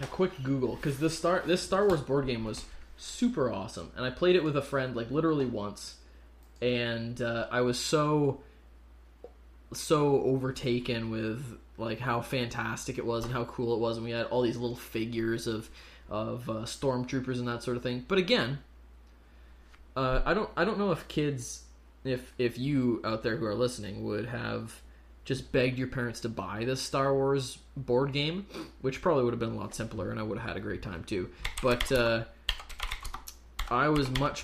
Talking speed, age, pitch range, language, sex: 195 wpm, 20-39, 100-130 Hz, English, male